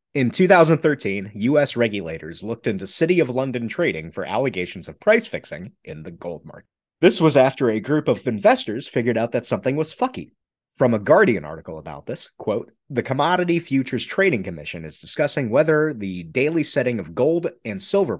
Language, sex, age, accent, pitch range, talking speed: English, male, 30-49, American, 105-160 Hz, 180 wpm